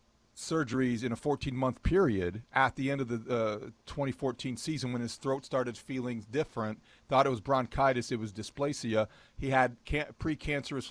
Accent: American